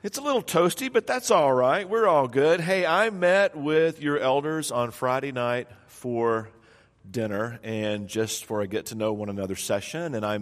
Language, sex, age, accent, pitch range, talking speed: English, male, 50-69, American, 115-165 Hz, 195 wpm